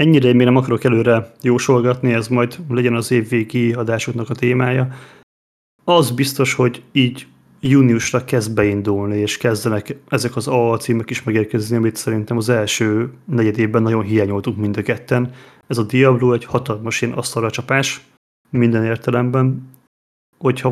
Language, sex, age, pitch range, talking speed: Hungarian, male, 30-49, 110-125 Hz, 150 wpm